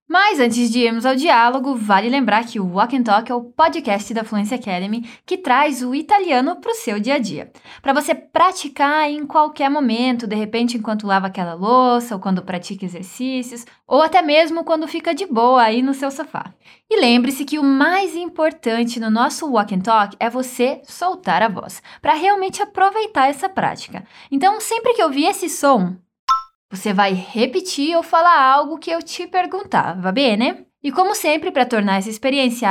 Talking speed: 185 wpm